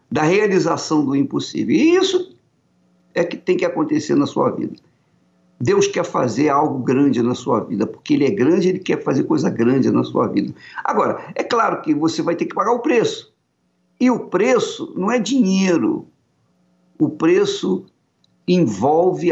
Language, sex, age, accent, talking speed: Portuguese, male, 50-69, Brazilian, 170 wpm